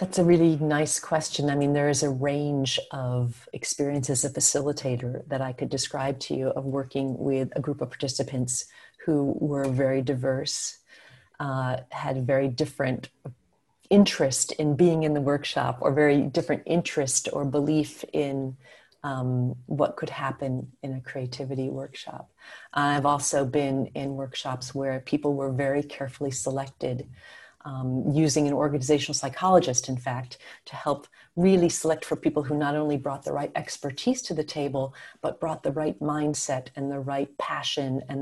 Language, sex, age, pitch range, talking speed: English, female, 40-59, 135-150 Hz, 160 wpm